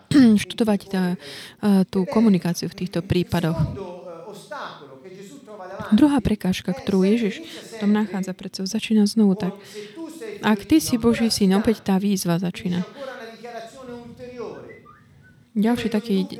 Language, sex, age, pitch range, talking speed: Slovak, female, 20-39, 185-225 Hz, 110 wpm